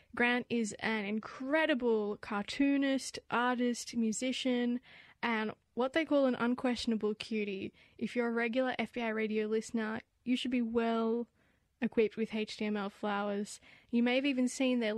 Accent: Australian